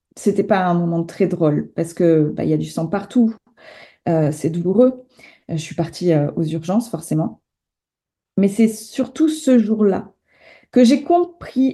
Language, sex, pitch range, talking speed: French, female, 195-245 Hz, 170 wpm